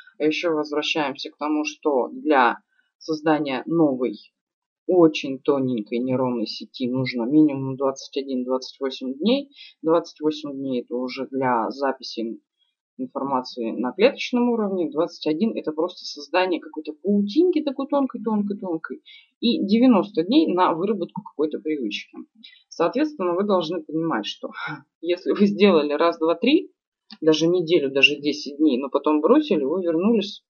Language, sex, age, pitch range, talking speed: Russian, female, 20-39, 150-210 Hz, 120 wpm